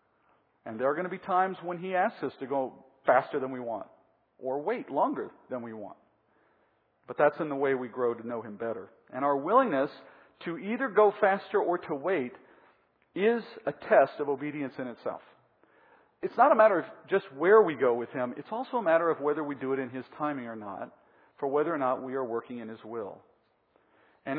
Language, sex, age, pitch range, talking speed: English, male, 50-69, 140-210 Hz, 215 wpm